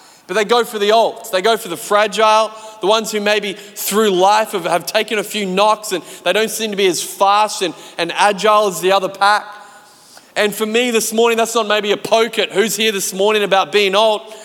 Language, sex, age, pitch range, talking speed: English, male, 20-39, 195-230 Hz, 235 wpm